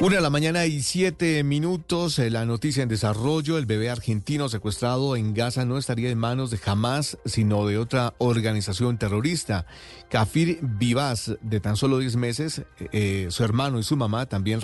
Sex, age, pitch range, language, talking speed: male, 40-59, 105-125 Hz, Spanish, 175 wpm